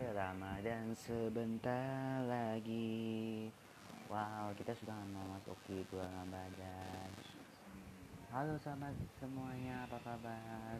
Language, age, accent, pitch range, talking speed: Indonesian, 20-39, native, 95-120 Hz, 80 wpm